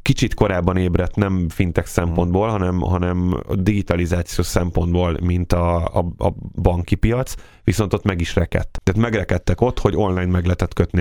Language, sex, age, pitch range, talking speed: Hungarian, male, 30-49, 90-105 Hz, 165 wpm